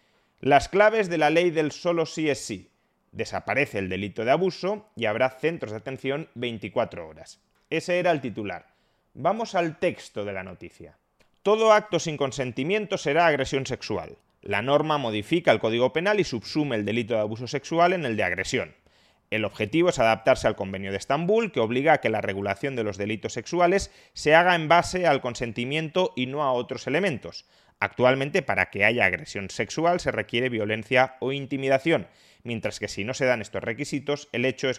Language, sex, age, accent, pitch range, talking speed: Spanish, male, 30-49, Spanish, 110-160 Hz, 185 wpm